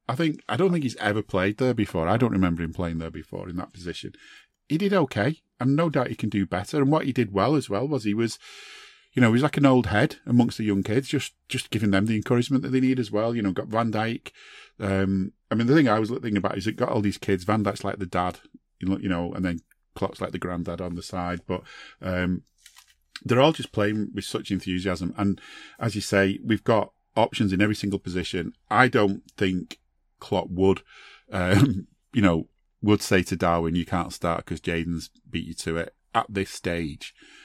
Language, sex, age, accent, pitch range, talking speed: English, male, 40-59, British, 90-110 Hz, 230 wpm